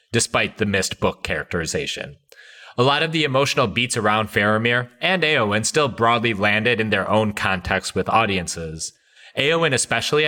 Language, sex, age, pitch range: English, male, 30-49, 100-130 Hz